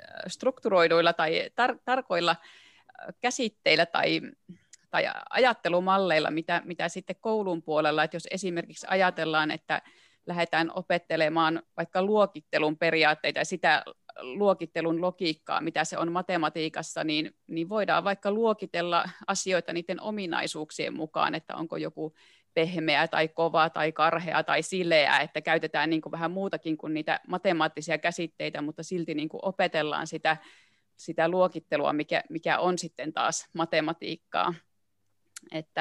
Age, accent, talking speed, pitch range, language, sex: 30-49, native, 120 wpm, 160-180 Hz, Finnish, female